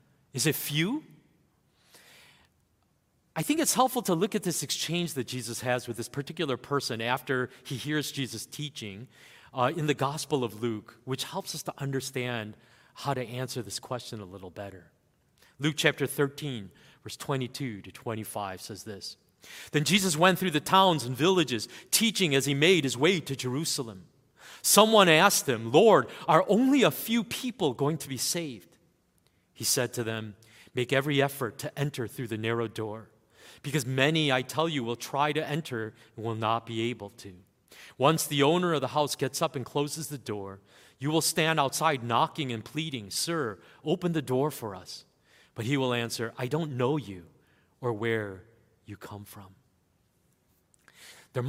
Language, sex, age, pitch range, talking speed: English, male, 40-59, 115-155 Hz, 170 wpm